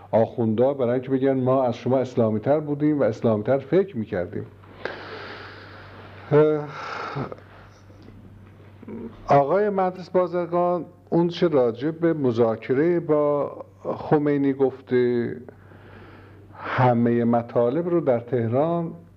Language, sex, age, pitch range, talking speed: Persian, male, 50-69, 100-125 Hz, 90 wpm